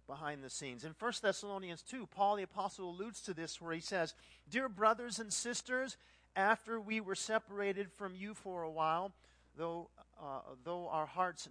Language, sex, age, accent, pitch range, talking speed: English, male, 50-69, American, 160-205 Hz, 175 wpm